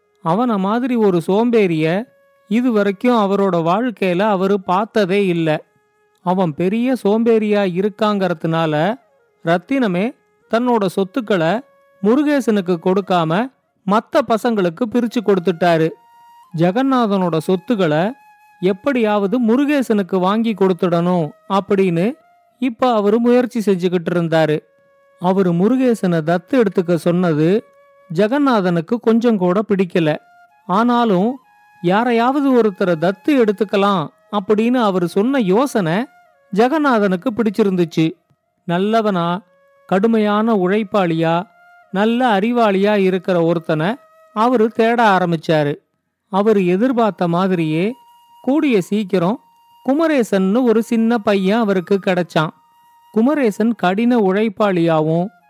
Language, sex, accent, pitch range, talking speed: Tamil, male, native, 185-240 Hz, 85 wpm